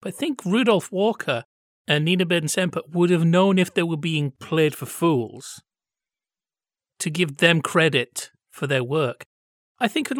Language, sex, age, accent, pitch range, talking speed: English, male, 40-59, British, 145-195 Hz, 165 wpm